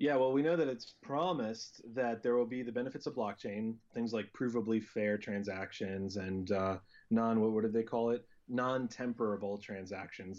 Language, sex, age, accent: English, male, 30-49, American